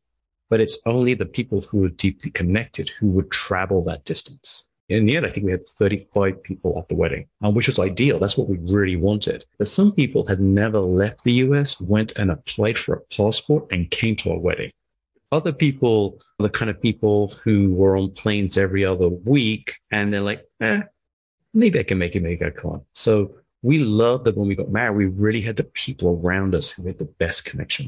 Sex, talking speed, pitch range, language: male, 215 wpm, 90-110 Hz, English